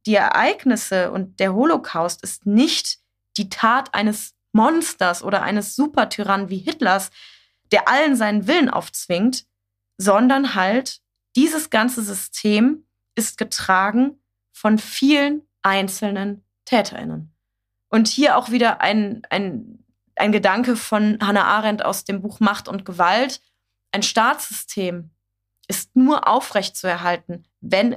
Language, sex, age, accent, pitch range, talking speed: German, female, 20-39, German, 180-235 Hz, 120 wpm